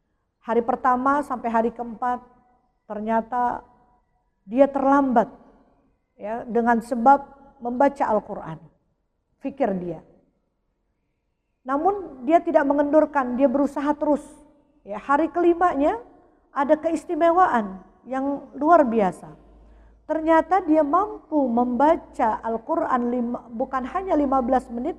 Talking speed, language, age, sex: 95 wpm, Indonesian, 50-69, female